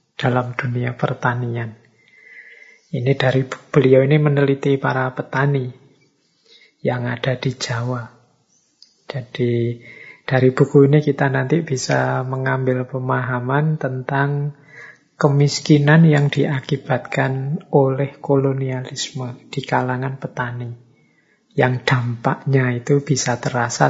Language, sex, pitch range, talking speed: Indonesian, male, 130-145 Hz, 95 wpm